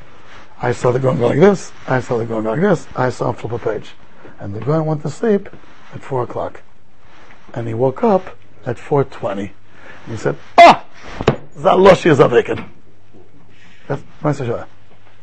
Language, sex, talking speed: English, male, 165 wpm